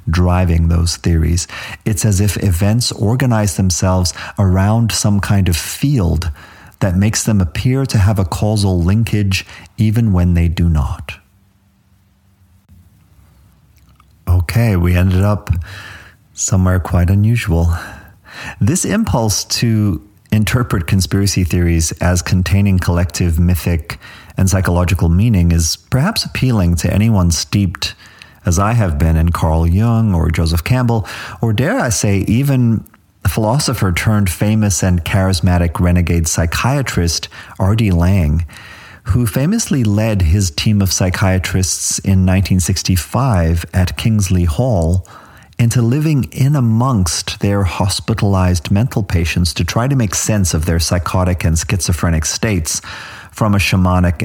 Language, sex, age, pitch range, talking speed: English, male, 40-59, 90-105 Hz, 120 wpm